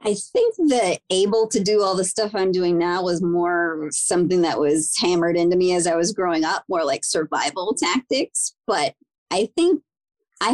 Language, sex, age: English, male, 30-49